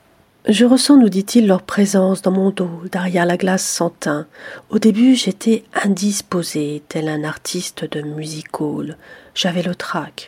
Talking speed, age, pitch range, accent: 160 wpm, 40-59, 175-215 Hz, French